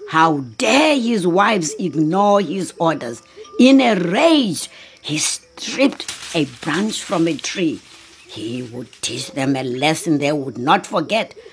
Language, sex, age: English, female, 60-79